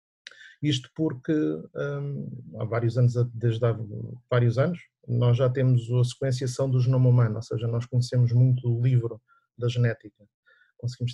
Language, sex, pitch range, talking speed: English, male, 120-150 Hz, 145 wpm